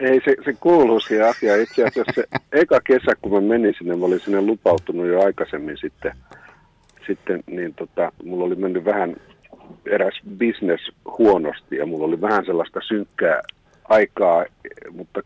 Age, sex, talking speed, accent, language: 50-69, male, 155 wpm, native, Finnish